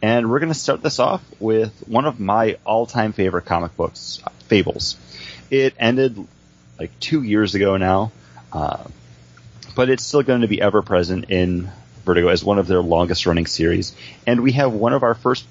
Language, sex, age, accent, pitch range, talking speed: English, male, 30-49, American, 80-110 Hz, 180 wpm